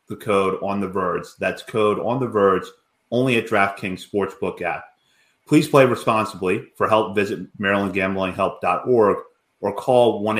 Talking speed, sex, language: 150 wpm, male, English